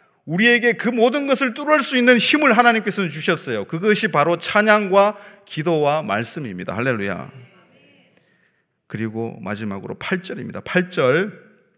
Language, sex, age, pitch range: Korean, male, 30-49, 125-175 Hz